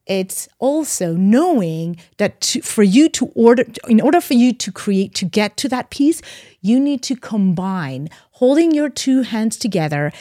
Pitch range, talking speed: 195-255 Hz, 170 wpm